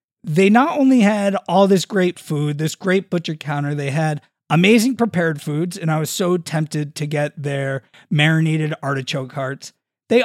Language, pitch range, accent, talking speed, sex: English, 145-180 Hz, American, 170 wpm, male